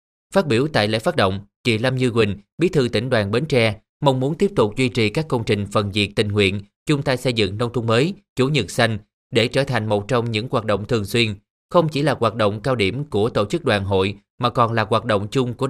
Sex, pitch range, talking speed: male, 105-130 Hz, 260 wpm